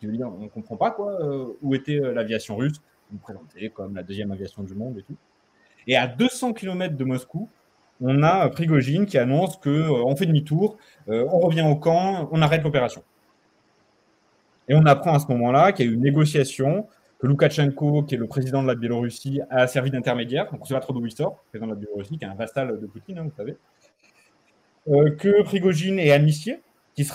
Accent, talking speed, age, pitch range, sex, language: French, 195 wpm, 30-49, 120-155 Hz, male, French